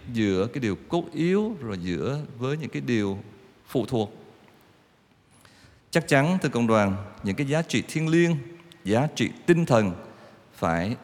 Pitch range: 105-145 Hz